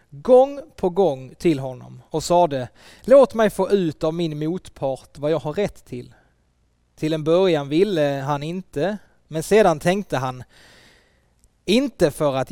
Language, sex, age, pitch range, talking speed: Swedish, male, 20-39, 130-195 Hz, 160 wpm